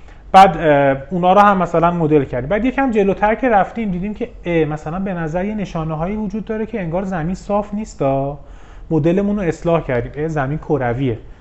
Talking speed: 175 wpm